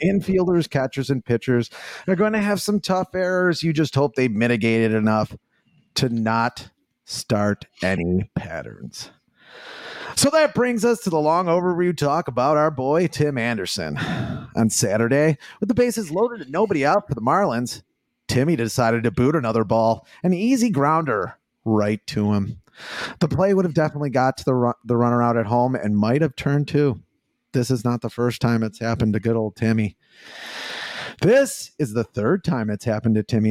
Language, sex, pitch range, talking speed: English, male, 115-180 Hz, 180 wpm